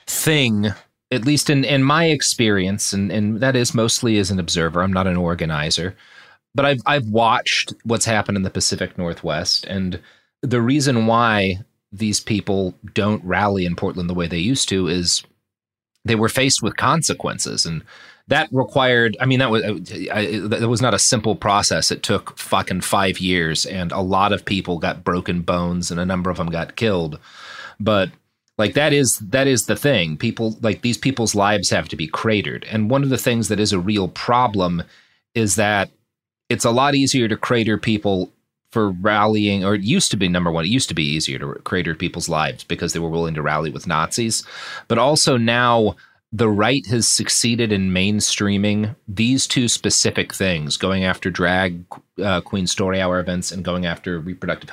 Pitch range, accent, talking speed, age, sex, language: 90-115 Hz, American, 190 wpm, 30-49, male, English